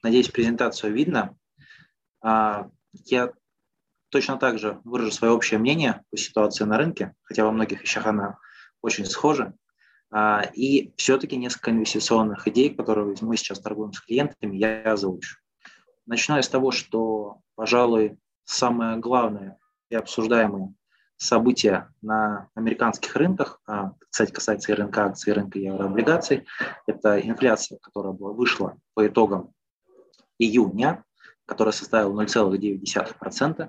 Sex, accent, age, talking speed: male, native, 20-39, 120 wpm